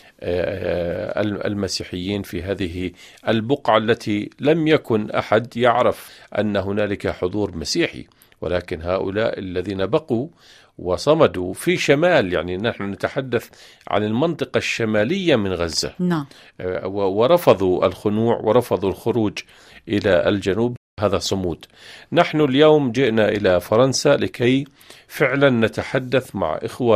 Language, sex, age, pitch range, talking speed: Arabic, male, 50-69, 100-130 Hz, 100 wpm